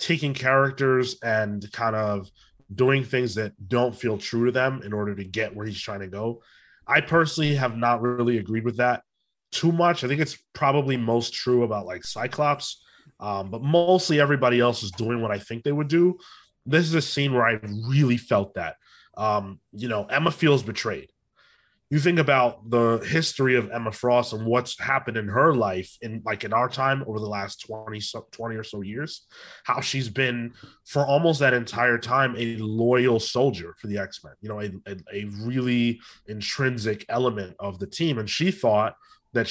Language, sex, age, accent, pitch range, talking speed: English, male, 20-39, American, 105-135 Hz, 190 wpm